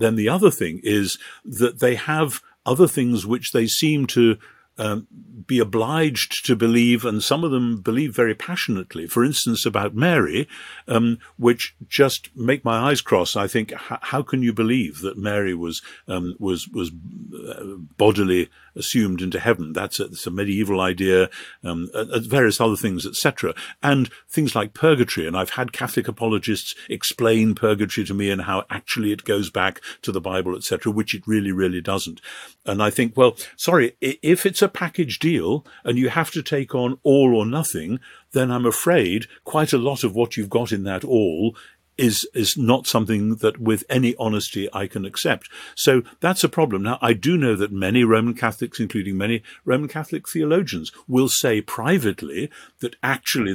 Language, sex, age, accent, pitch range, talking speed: English, male, 50-69, British, 100-125 Hz, 175 wpm